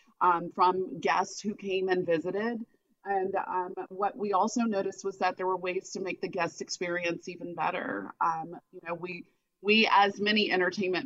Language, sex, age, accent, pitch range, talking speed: English, female, 30-49, American, 175-200 Hz, 180 wpm